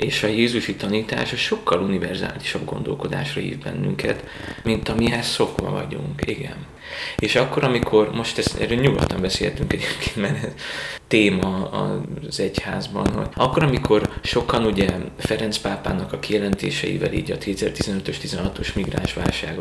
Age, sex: 20-39, male